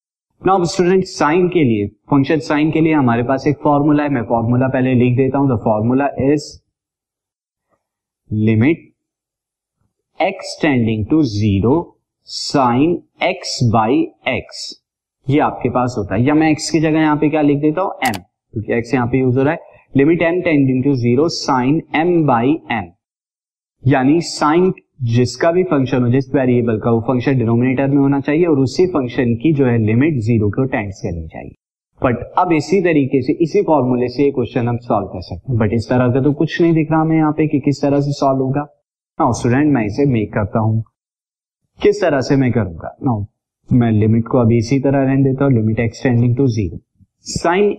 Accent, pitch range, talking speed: native, 120-155 Hz, 170 wpm